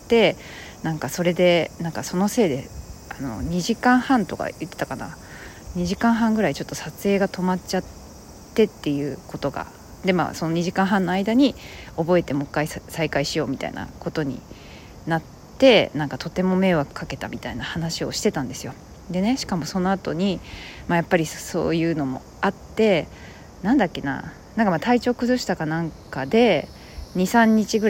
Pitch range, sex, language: 160-220 Hz, female, Japanese